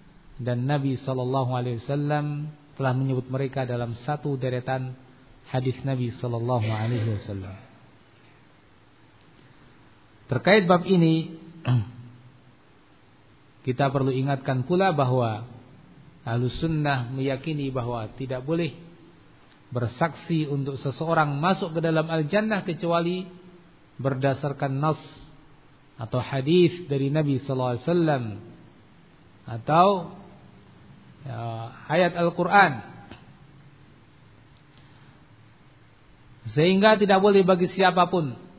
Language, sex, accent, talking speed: Indonesian, male, native, 85 wpm